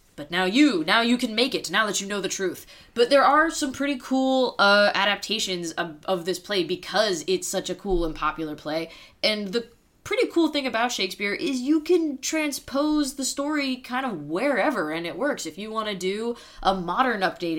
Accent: American